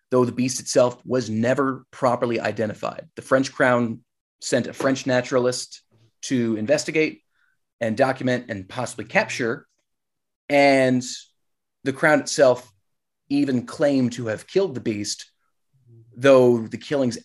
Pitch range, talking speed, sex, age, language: 115-135 Hz, 125 wpm, male, 30-49, English